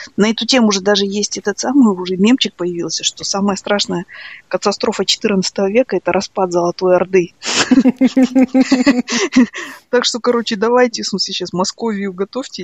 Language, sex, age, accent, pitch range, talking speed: Russian, female, 20-39, native, 180-245 Hz, 145 wpm